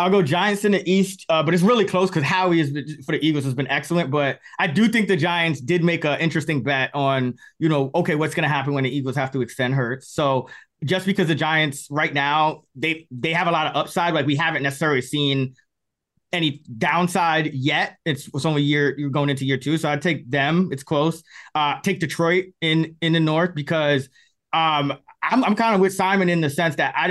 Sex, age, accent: male, 20-39, American